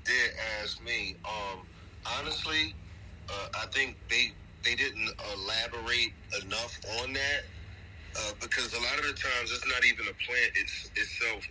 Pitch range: 70-95 Hz